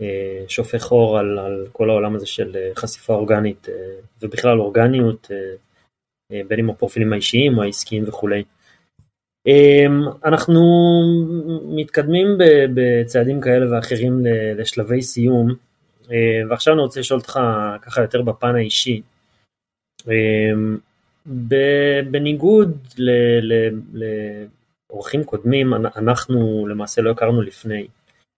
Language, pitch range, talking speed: English, 110-130 Hz, 90 wpm